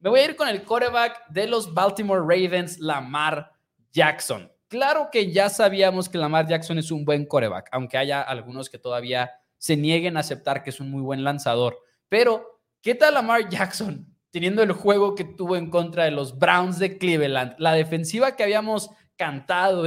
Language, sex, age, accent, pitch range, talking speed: Spanish, male, 20-39, Mexican, 150-190 Hz, 185 wpm